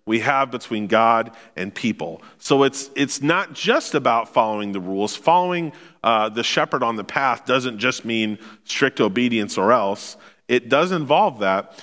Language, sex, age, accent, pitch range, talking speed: English, male, 40-59, American, 110-165 Hz, 165 wpm